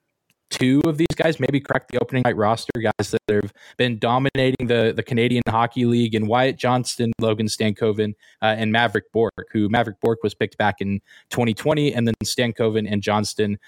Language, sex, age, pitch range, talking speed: English, male, 20-39, 105-125 Hz, 185 wpm